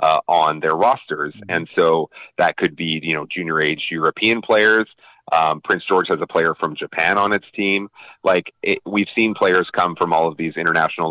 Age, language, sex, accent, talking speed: 30-49, English, male, American, 200 wpm